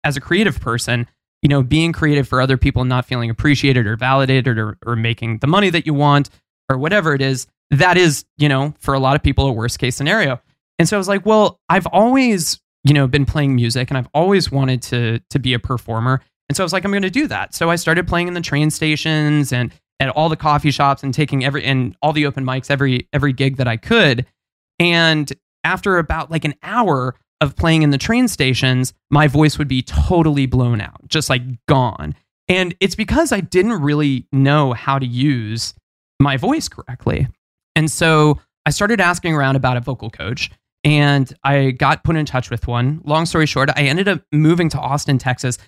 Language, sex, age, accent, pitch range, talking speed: English, male, 20-39, American, 130-160 Hz, 215 wpm